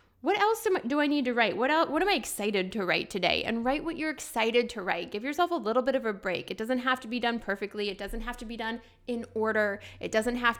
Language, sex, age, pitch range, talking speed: English, female, 10-29, 210-255 Hz, 275 wpm